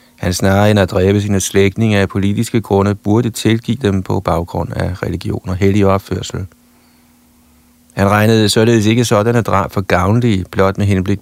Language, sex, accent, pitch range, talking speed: Danish, male, native, 90-115 Hz, 165 wpm